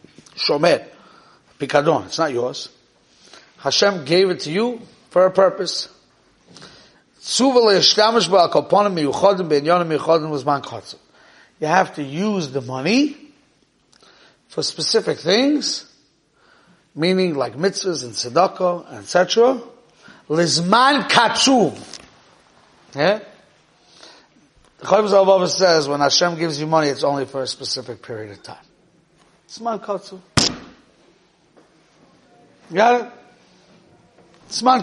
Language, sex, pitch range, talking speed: English, male, 150-205 Hz, 80 wpm